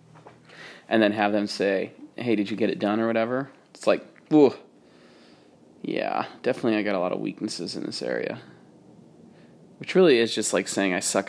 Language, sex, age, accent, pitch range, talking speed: English, male, 30-49, American, 105-125 Hz, 180 wpm